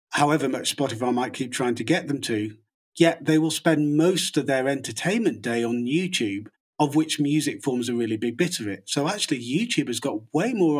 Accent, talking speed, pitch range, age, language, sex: British, 210 wpm, 120-150 Hz, 40-59, English, male